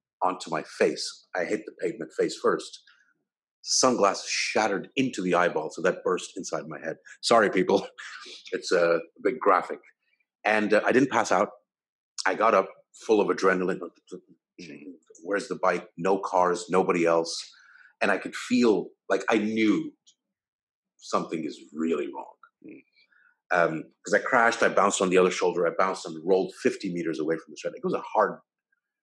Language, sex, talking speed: English, male, 165 wpm